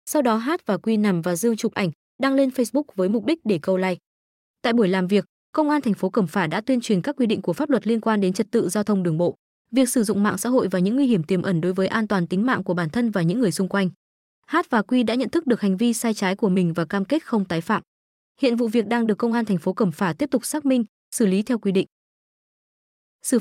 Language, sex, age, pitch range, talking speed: Vietnamese, female, 20-39, 195-250 Hz, 290 wpm